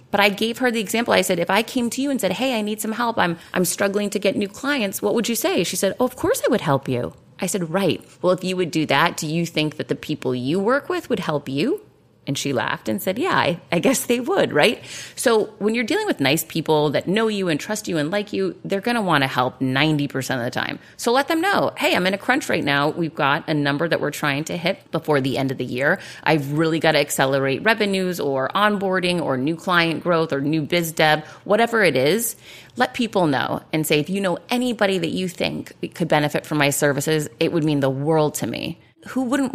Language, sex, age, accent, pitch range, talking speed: English, female, 30-49, American, 150-205 Hz, 260 wpm